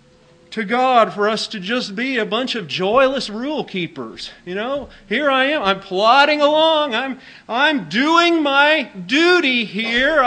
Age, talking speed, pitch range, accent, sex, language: 40-59, 160 wpm, 190-255 Hz, American, male, English